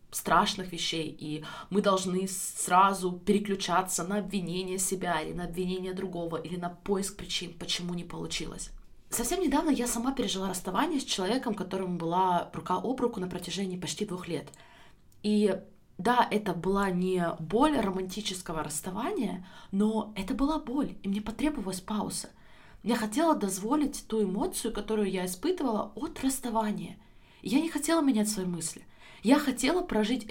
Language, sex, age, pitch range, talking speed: Russian, female, 20-39, 170-215 Hz, 145 wpm